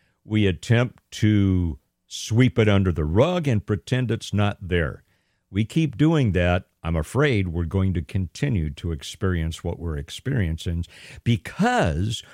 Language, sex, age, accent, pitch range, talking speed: English, male, 50-69, American, 95-140 Hz, 140 wpm